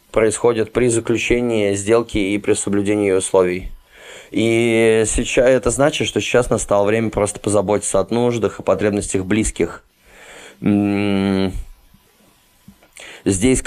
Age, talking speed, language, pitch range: 20-39, 100 wpm, Russian, 100-120 Hz